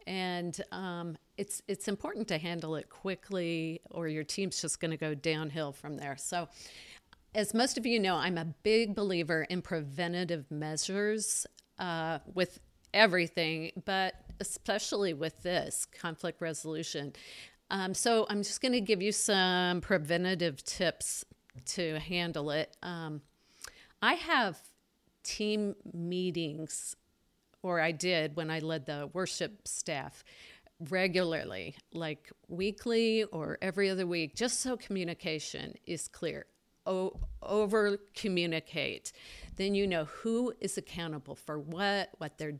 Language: English